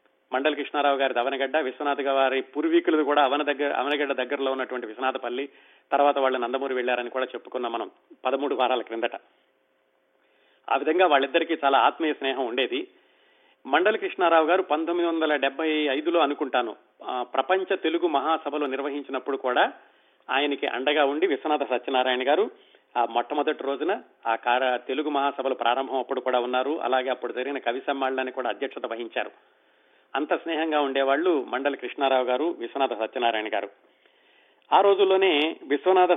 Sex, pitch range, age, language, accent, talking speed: male, 130-160 Hz, 30-49, Telugu, native, 130 wpm